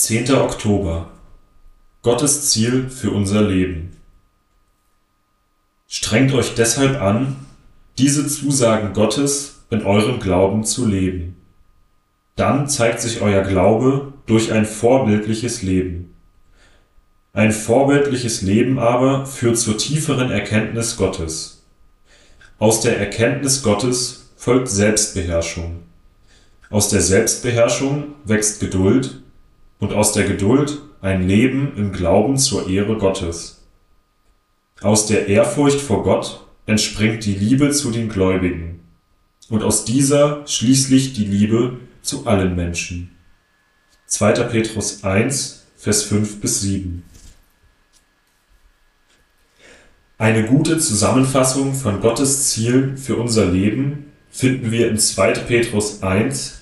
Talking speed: 105 wpm